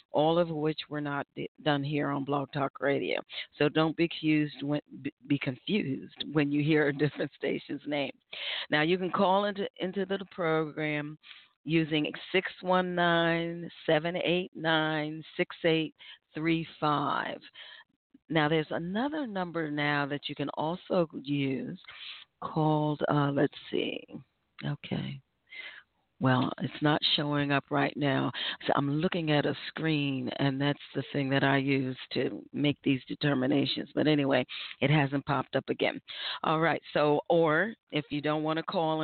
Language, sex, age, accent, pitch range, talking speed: English, female, 40-59, American, 145-170 Hz, 135 wpm